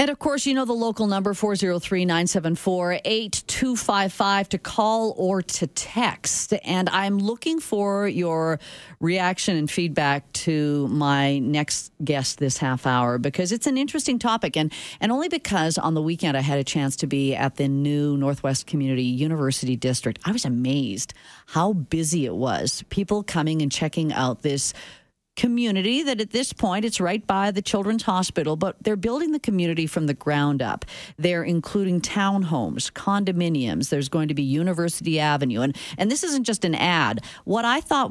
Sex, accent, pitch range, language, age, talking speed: female, American, 150-215 Hz, English, 40-59, 170 wpm